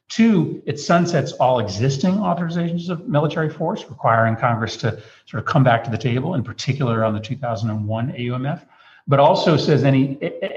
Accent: American